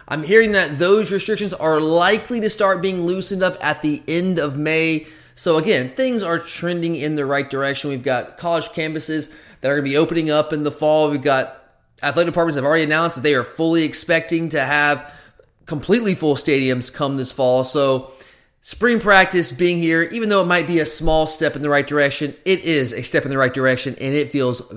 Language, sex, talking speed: English, male, 215 wpm